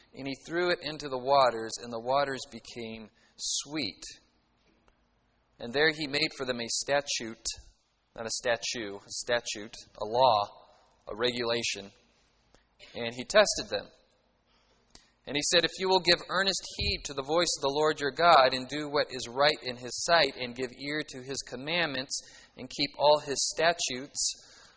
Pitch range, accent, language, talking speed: 115-145 Hz, American, English, 165 wpm